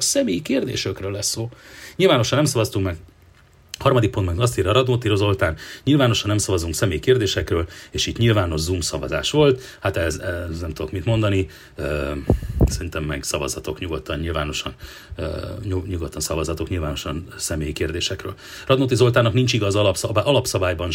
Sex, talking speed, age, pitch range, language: male, 145 wpm, 40-59, 90-115 Hz, Hungarian